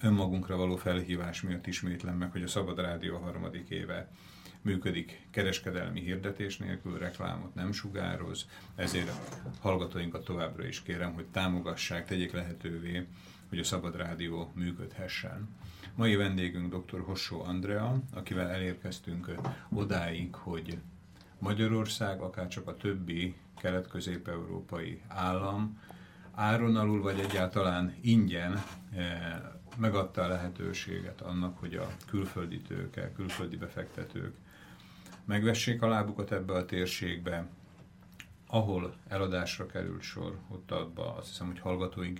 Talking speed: 115 wpm